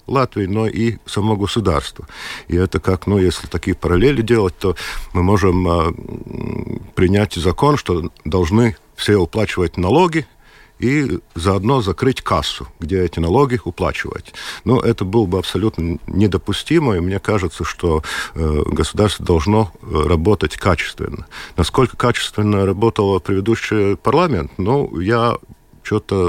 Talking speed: 125 wpm